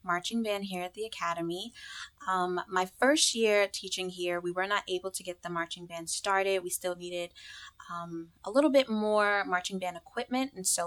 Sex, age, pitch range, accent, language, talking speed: female, 20-39, 170-200 Hz, American, English, 195 wpm